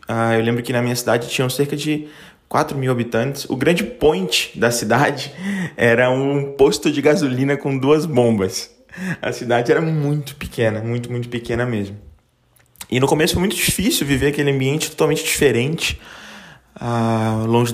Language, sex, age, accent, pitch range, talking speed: Portuguese, male, 20-39, Brazilian, 120-165 Hz, 160 wpm